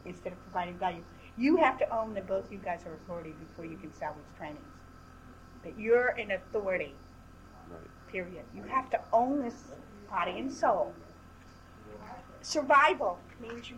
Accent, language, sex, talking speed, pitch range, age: American, English, female, 150 wpm, 220-290 Hz, 50-69